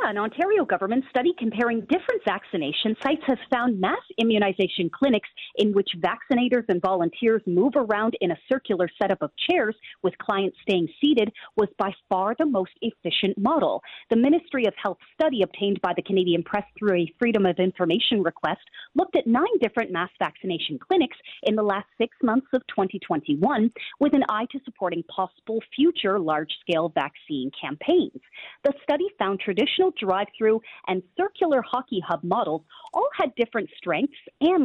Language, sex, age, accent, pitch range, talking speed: English, female, 40-59, American, 190-275 Hz, 165 wpm